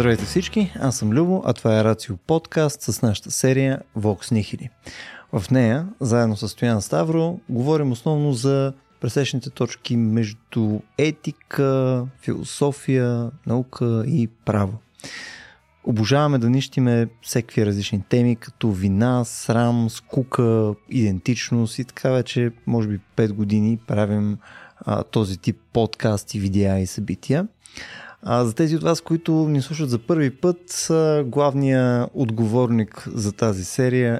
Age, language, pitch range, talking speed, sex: 20-39, Bulgarian, 110-140 Hz, 130 wpm, male